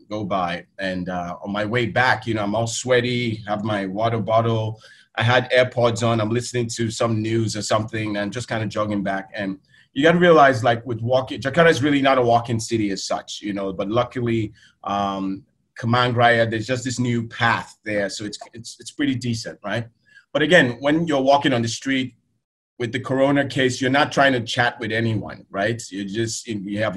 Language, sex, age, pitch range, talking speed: English, male, 30-49, 110-130 Hz, 215 wpm